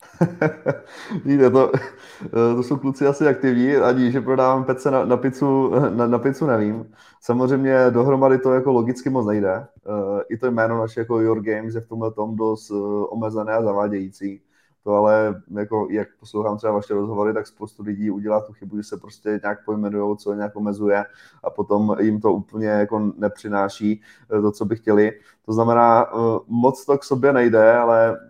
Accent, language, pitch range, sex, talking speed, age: native, Czech, 105-115 Hz, male, 170 wpm, 20-39